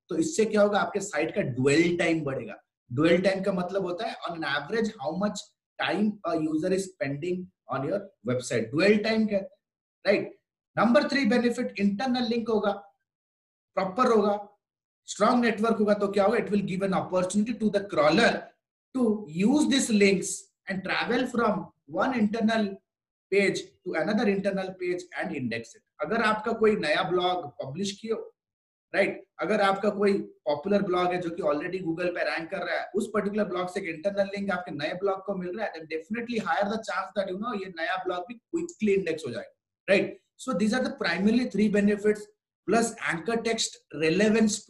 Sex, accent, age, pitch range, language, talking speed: male, native, 30-49, 180-220 Hz, Hindi, 85 wpm